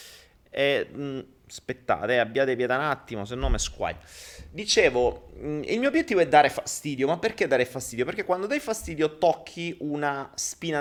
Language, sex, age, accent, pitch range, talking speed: Italian, male, 30-49, native, 120-160 Hz, 165 wpm